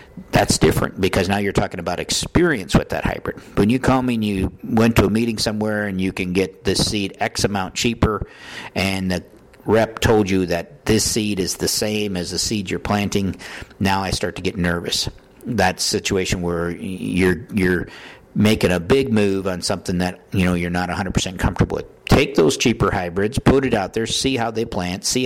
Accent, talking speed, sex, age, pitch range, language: American, 200 wpm, male, 50-69, 90-110 Hz, English